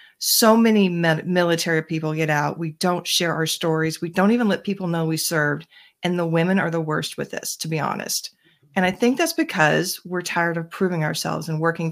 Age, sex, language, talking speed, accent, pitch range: 40-59, female, English, 210 wpm, American, 165-210 Hz